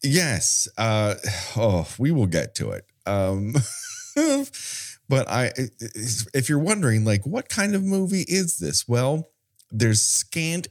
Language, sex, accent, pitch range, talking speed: English, male, American, 95-130 Hz, 135 wpm